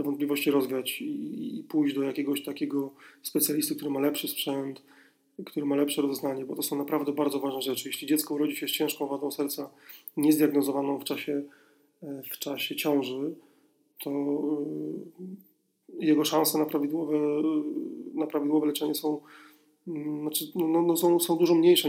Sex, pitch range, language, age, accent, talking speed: male, 140-155 Hz, Polish, 30-49, native, 150 wpm